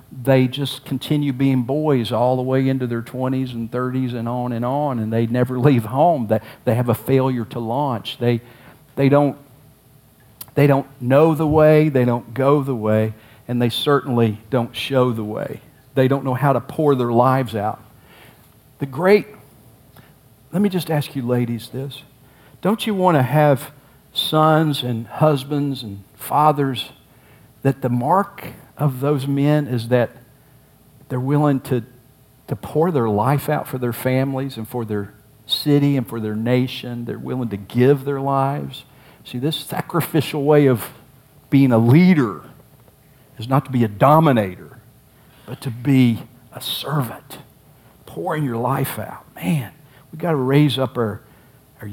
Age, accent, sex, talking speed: 50-69, American, male, 165 wpm